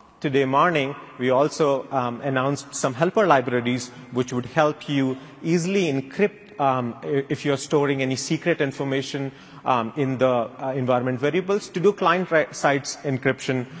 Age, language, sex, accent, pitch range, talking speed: 30-49, English, male, Indian, 130-155 Hz, 140 wpm